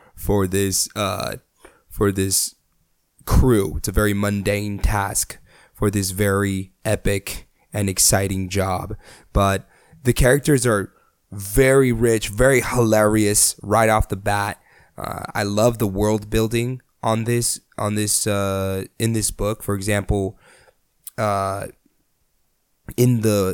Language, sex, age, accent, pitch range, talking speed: English, male, 20-39, American, 100-120 Hz, 125 wpm